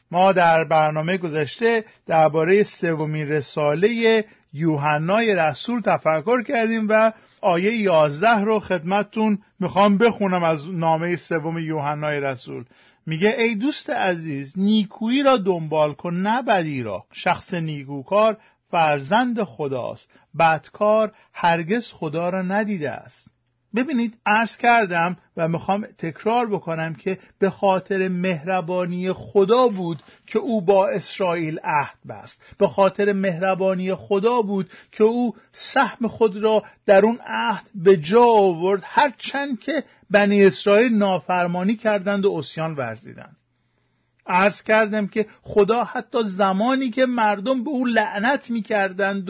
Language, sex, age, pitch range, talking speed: Persian, male, 50-69, 180-225 Hz, 125 wpm